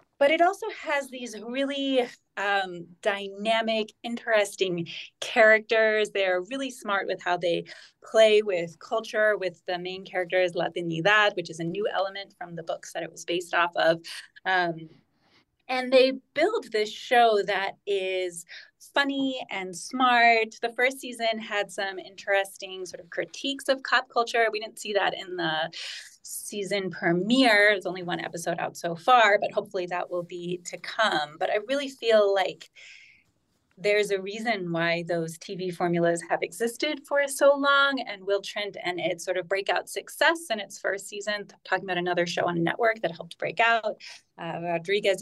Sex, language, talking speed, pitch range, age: female, English, 170 wpm, 180-235 Hz, 30-49